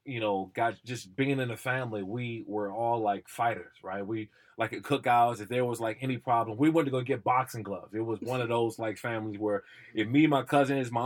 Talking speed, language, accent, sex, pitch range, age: 240 wpm, English, American, male, 105-125 Hz, 20-39